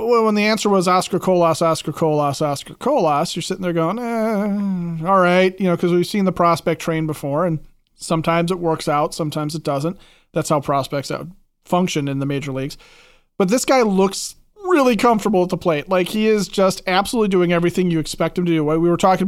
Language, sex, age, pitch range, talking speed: English, male, 30-49, 155-185 Hz, 205 wpm